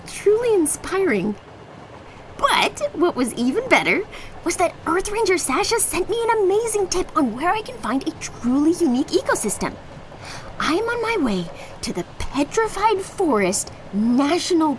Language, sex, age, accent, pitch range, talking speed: English, female, 20-39, American, 230-370 Hz, 145 wpm